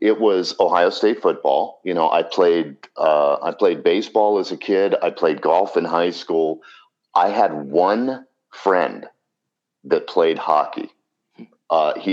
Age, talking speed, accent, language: 40-59, 155 wpm, American, English